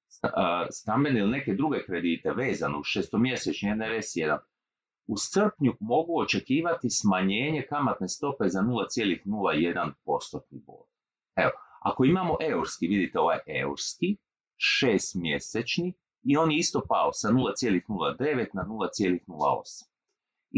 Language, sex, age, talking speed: Croatian, male, 40-59, 105 wpm